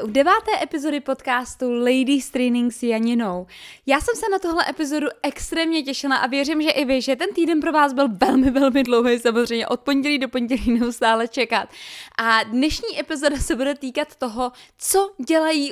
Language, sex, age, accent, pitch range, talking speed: Czech, female, 20-39, native, 270-350 Hz, 175 wpm